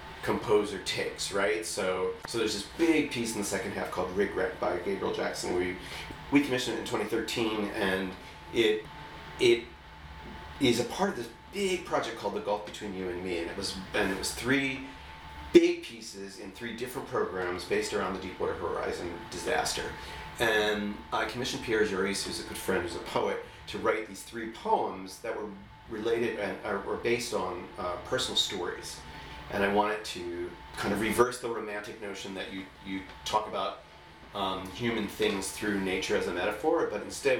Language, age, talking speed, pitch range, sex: English, 40-59, 180 wpm, 95-130 Hz, male